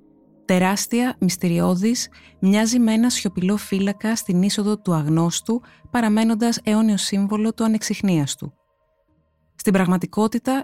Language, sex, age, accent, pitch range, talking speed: Greek, female, 20-39, native, 175-225 Hz, 105 wpm